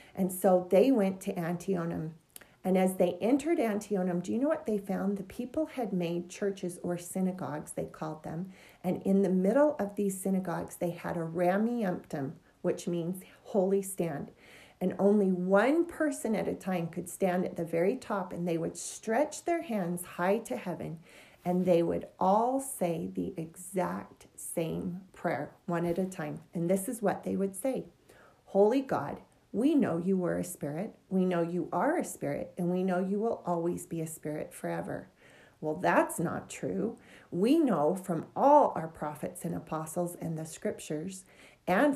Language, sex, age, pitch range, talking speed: English, female, 40-59, 175-210 Hz, 175 wpm